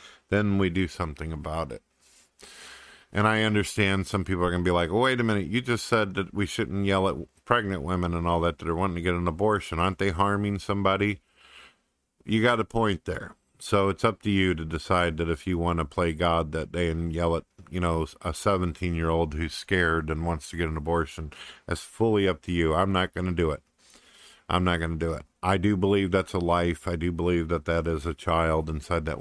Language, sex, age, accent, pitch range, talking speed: English, male, 50-69, American, 80-100 Hz, 230 wpm